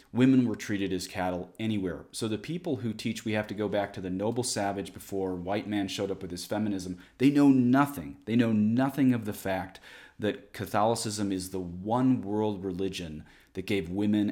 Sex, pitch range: male, 90-110 Hz